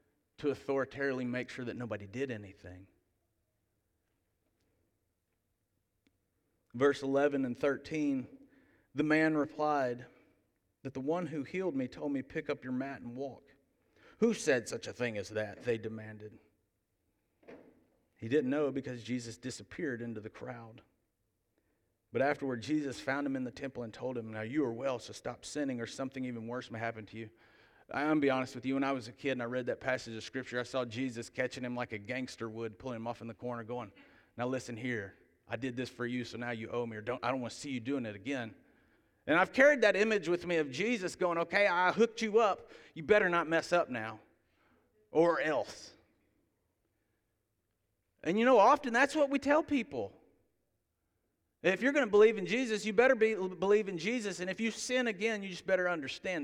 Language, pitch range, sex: English, 110-155 Hz, male